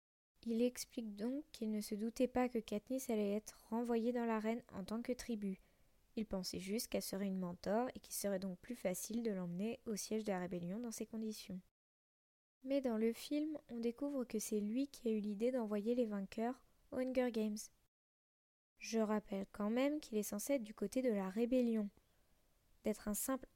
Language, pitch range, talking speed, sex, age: French, 210-245 Hz, 195 wpm, female, 20-39